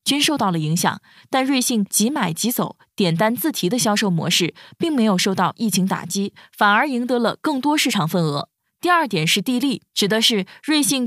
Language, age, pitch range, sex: Chinese, 20-39, 185-255 Hz, female